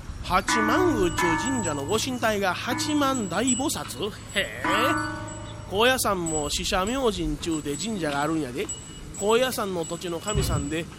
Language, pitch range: Japanese, 160-240 Hz